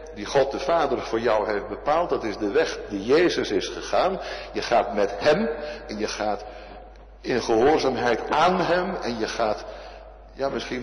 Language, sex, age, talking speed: Dutch, male, 60-79, 175 wpm